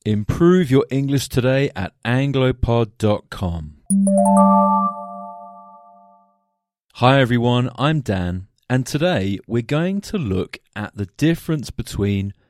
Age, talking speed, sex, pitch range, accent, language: 30-49, 95 wpm, male, 100-135 Hz, British, English